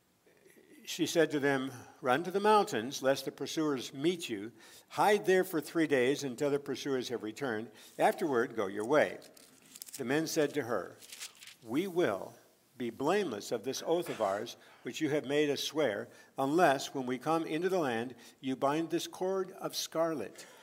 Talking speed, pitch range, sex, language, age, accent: 175 wpm, 130-180 Hz, male, English, 60-79, American